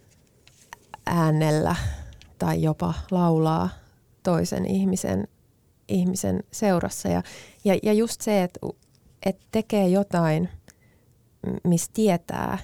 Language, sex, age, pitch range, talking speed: Finnish, female, 20-39, 170-205 Hz, 90 wpm